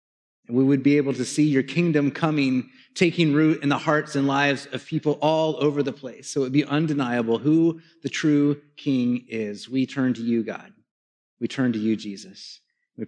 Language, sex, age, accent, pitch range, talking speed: English, male, 30-49, American, 135-165 Hz, 200 wpm